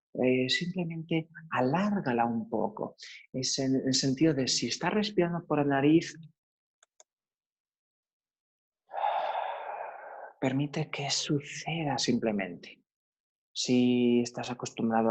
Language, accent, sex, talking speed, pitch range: Spanish, Spanish, male, 90 wpm, 115-175 Hz